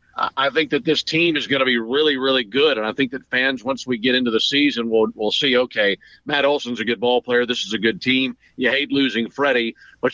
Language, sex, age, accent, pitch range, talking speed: English, male, 50-69, American, 120-140 Hz, 255 wpm